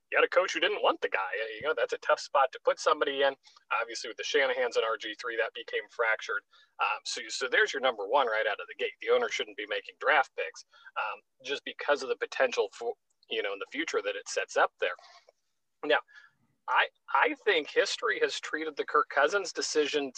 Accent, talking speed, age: American, 225 wpm, 40-59